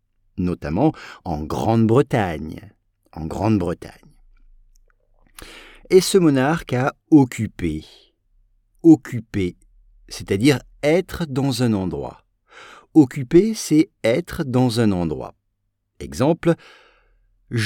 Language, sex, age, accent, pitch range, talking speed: English, male, 50-69, French, 100-150 Hz, 110 wpm